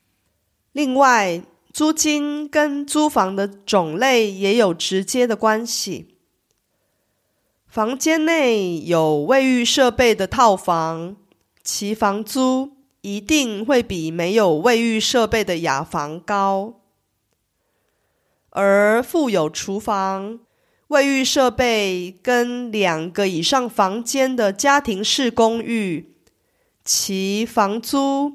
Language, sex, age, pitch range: Korean, female, 30-49, 190-260 Hz